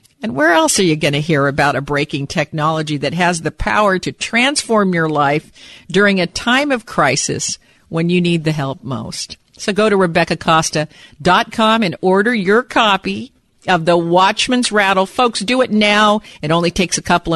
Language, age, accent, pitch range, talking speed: English, 50-69, American, 155-210 Hz, 180 wpm